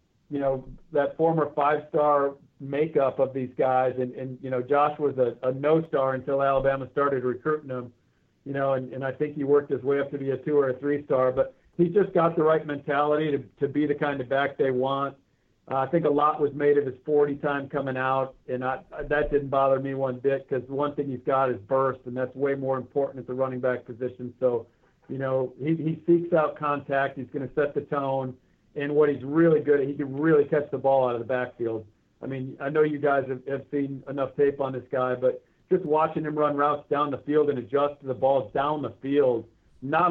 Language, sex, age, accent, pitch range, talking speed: English, male, 50-69, American, 130-150 Hz, 235 wpm